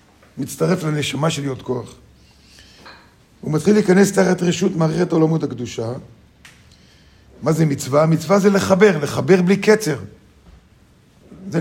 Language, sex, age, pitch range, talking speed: Hebrew, male, 50-69, 140-200 Hz, 120 wpm